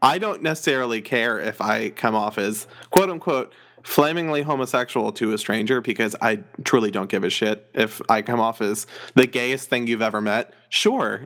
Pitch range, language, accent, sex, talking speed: 110-135 Hz, English, American, male, 185 wpm